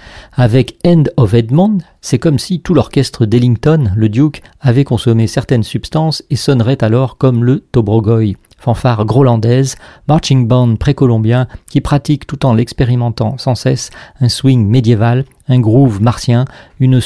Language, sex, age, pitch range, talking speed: French, male, 40-59, 115-140 Hz, 145 wpm